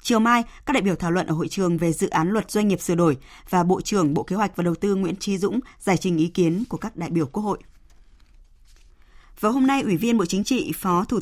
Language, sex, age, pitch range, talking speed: Vietnamese, female, 20-39, 175-225 Hz, 270 wpm